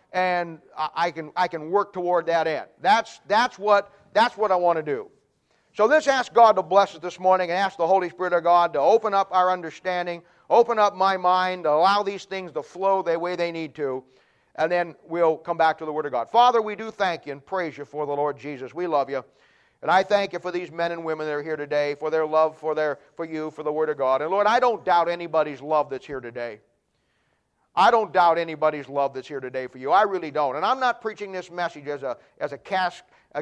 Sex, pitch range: male, 155-195 Hz